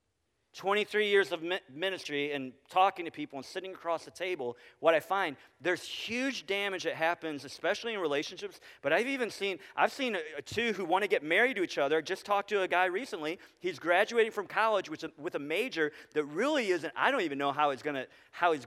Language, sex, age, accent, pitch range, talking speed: English, male, 40-59, American, 150-225 Hz, 205 wpm